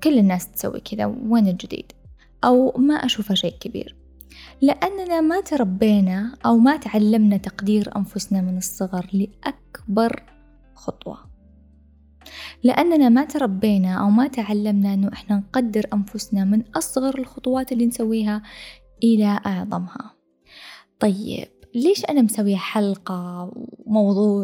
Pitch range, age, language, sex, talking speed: 195-235 Hz, 10-29, Arabic, female, 115 wpm